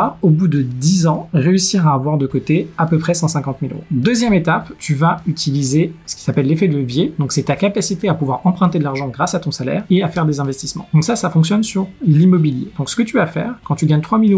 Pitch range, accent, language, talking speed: 145-180 Hz, French, French, 260 wpm